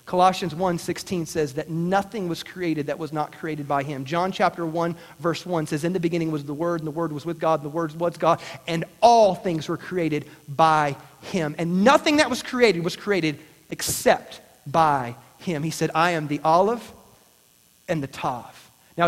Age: 40-59